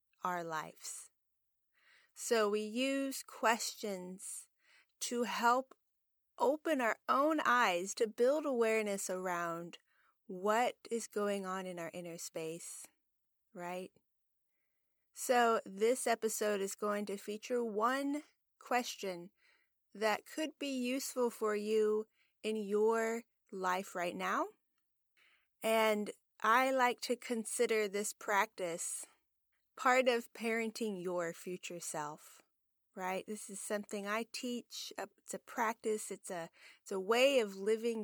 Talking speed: 115 wpm